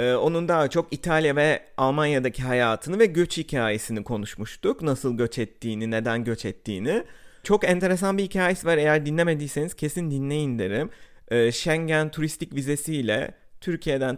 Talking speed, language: 130 wpm, Turkish